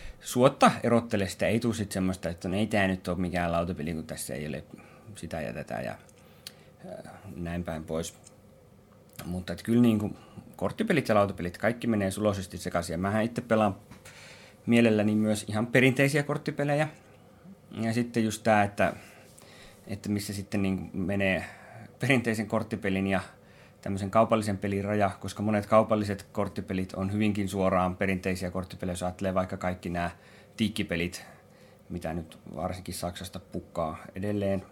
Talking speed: 130 wpm